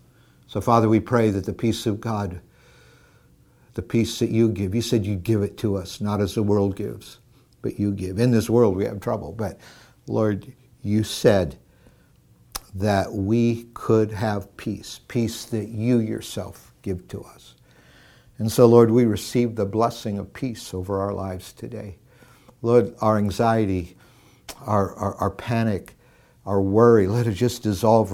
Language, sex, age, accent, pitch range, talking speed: English, male, 60-79, American, 100-120 Hz, 165 wpm